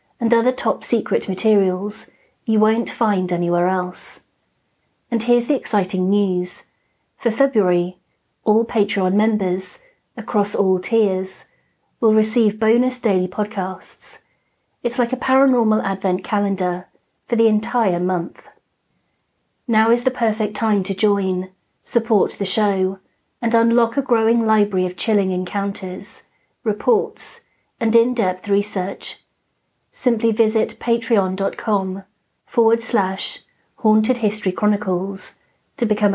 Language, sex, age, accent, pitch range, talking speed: English, female, 40-59, British, 190-230 Hz, 110 wpm